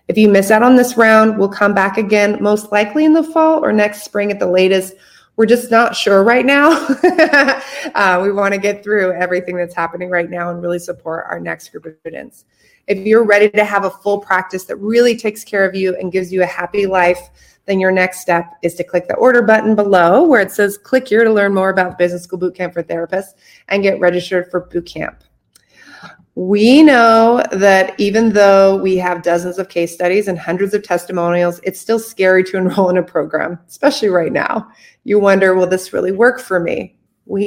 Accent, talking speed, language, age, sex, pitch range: American, 215 wpm, English, 20-39, female, 175-210 Hz